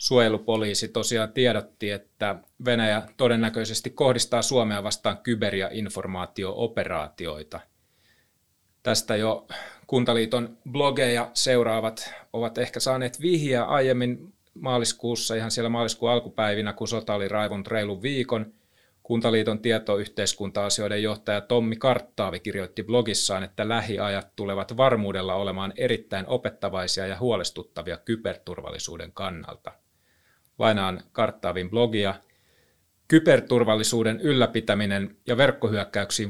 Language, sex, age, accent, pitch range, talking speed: Finnish, male, 30-49, native, 100-120 Hz, 95 wpm